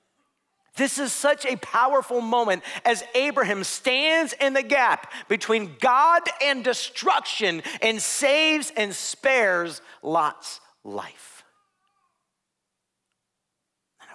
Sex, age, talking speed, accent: male, 40-59, 100 wpm, American